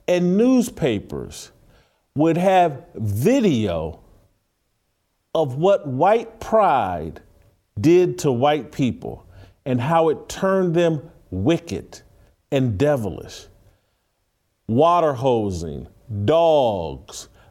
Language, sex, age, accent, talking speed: English, male, 50-69, American, 80 wpm